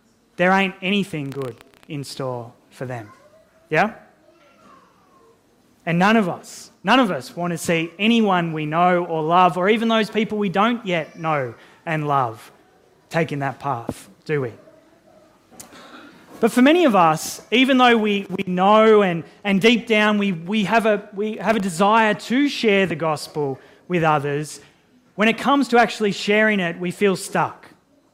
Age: 20-39